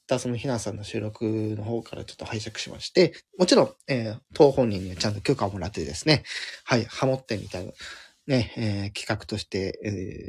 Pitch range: 105-135 Hz